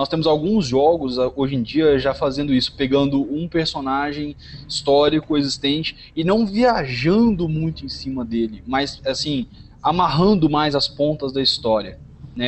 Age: 20-39